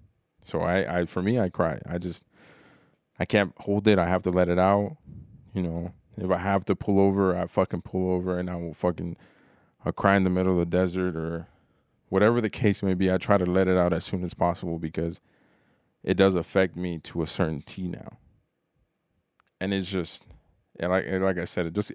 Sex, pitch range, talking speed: male, 90-100 Hz, 215 wpm